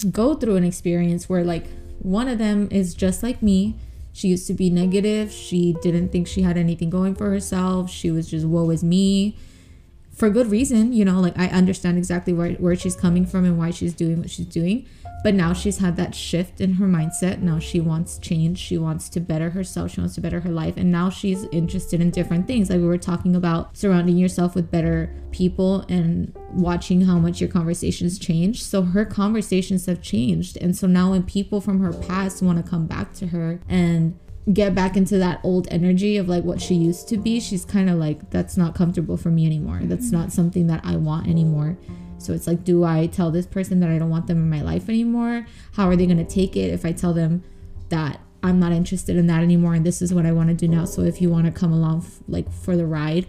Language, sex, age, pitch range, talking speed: English, female, 20-39, 170-190 Hz, 235 wpm